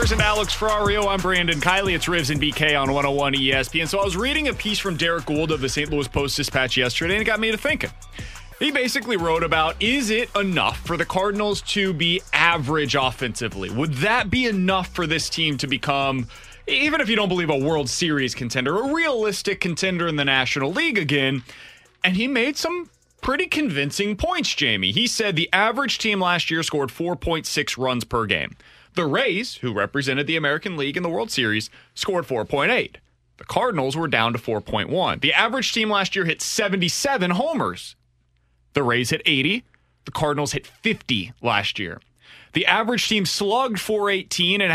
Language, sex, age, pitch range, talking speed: English, male, 30-49, 140-205 Hz, 185 wpm